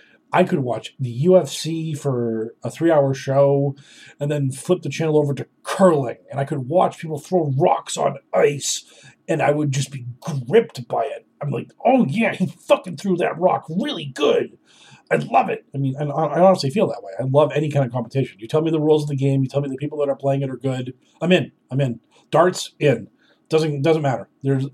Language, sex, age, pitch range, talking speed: English, male, 40-59, 135-180 Hz, 220 wpm